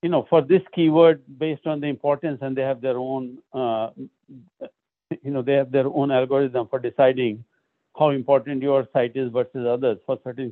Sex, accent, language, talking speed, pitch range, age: male, Indian, English, 190 wpm, 130-165 Hz, 60-79